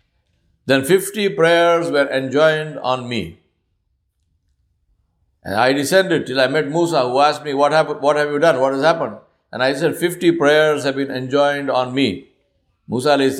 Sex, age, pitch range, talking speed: male, 60-79, 120-145 Hz, 165 wpm